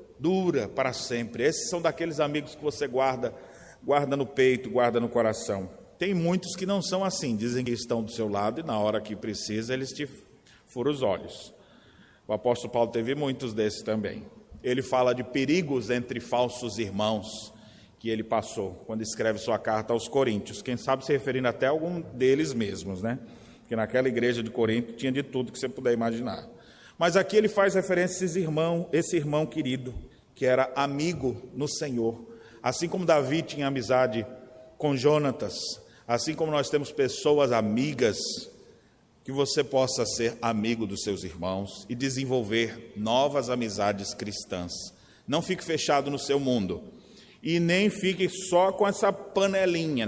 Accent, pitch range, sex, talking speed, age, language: Brazilian, 115-165 Hz, male, 165 wpm, 40-59, Portuguese